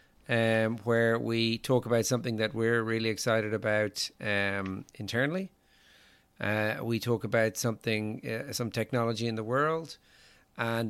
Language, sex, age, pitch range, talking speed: English, male, 40-59, 100-125 Hz, 140 wpm